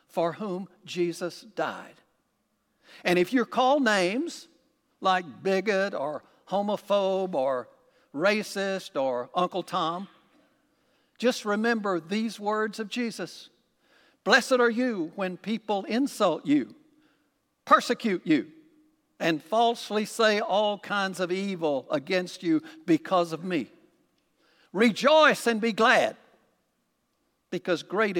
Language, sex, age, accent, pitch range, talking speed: English, male, 60-79, American, 165-245 Hz, 110 wpm